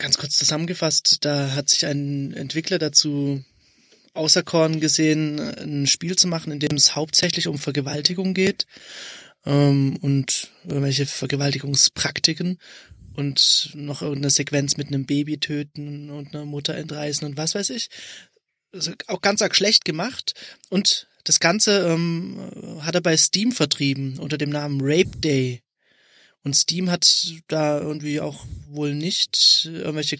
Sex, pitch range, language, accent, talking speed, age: male, 145-180 Hz, German, German, 145 wpm, 20-39